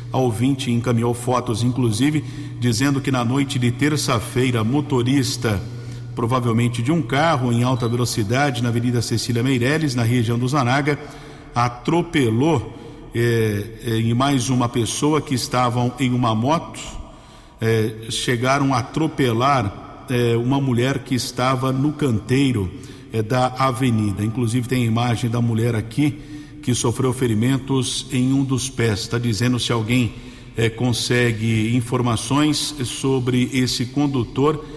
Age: 50-69